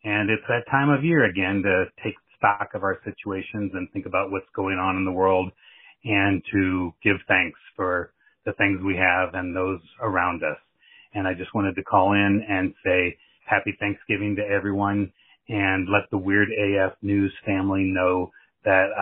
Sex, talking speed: male, 180 wpm